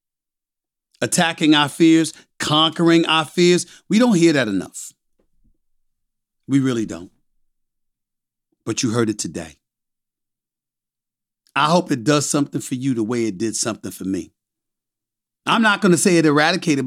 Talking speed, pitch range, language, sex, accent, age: 140 wpm, 120-150 Hz, English, male, American, 40-59